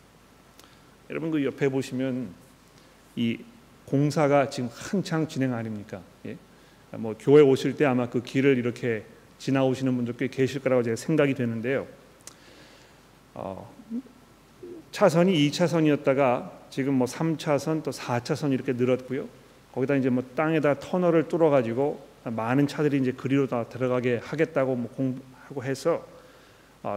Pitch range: 130-175 Hz